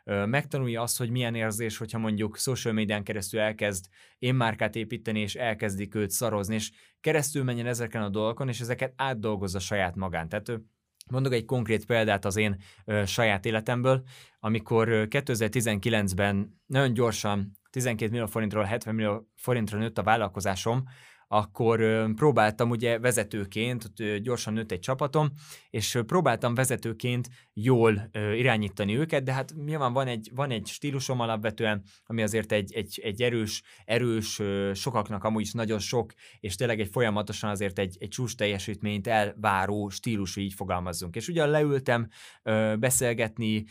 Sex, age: male, 20-39